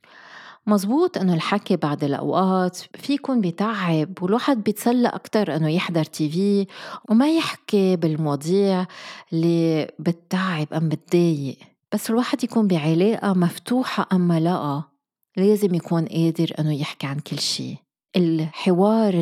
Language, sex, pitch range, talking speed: Arabic, female, 160-205 Hz, 120 wpm